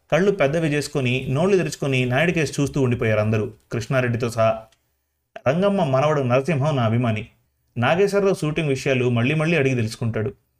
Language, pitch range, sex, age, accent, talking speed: Telugu, 110-150 Hz, male, 30-49, native, 130 wpm